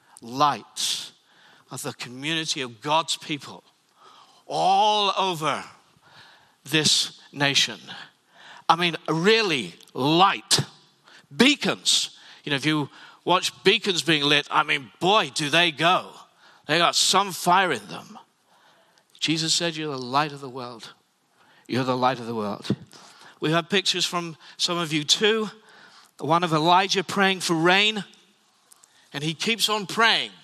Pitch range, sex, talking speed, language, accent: 155-195 Hz, male, 135 wpm, English, British